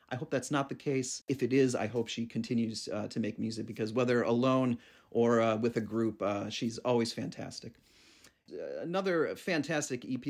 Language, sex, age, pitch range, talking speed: English, male, 40-59, 120-155 Hz, 190 wpm